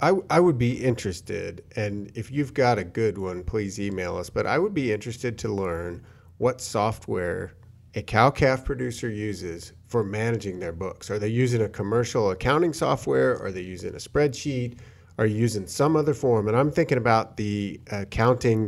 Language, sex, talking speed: English, male, 175 wpm